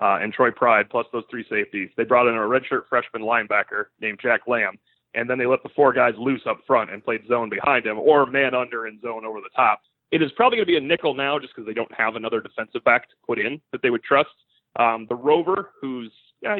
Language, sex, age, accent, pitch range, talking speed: English, male, 30-49, American, 115-150 Hz, 255 wpm